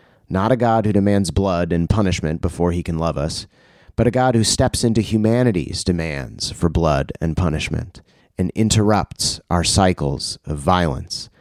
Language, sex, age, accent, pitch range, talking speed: English, male, 30-49, American, 85-110 Hz, 165 wpm